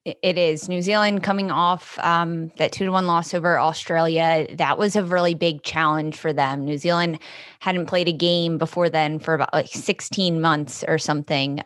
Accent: American